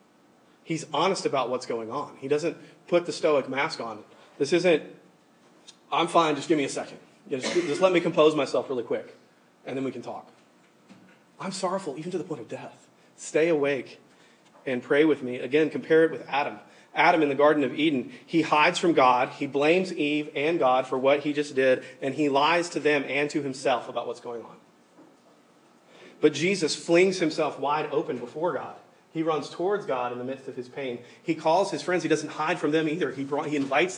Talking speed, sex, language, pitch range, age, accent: 205 wpm, male, English, 130-160 Hz, 30-49, American